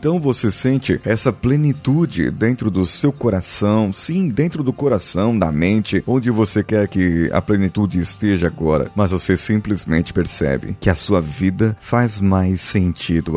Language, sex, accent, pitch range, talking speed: Portuguese, male, Brazilian, 90-120 Hz, 155 wpm